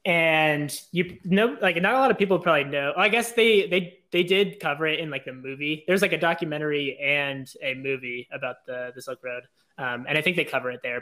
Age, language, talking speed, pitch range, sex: 20-39, English, 240 wpm, 135-175 Hz, male